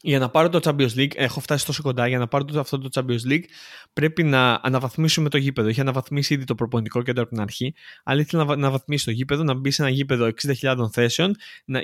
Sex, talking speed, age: male, 245 wpm, 20-39